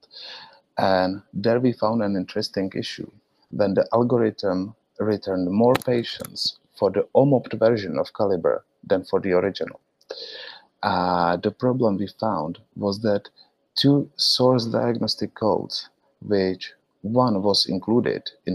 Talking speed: 125 wpm